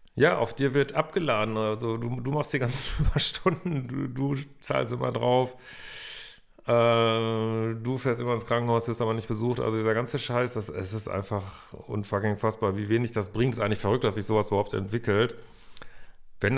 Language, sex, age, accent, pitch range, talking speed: German, male, 40-59, German, 105-125 Hz, 185 wpm